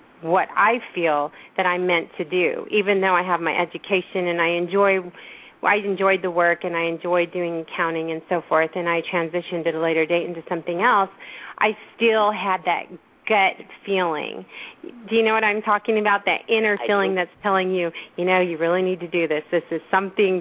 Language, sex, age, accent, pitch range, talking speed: English, female, 40-59, American, 170-200 Hz, 200 wpm